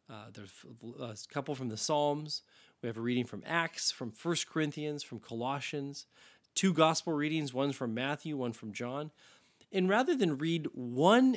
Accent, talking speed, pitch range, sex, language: American, 170 wpm, 120-155 Hz, male, English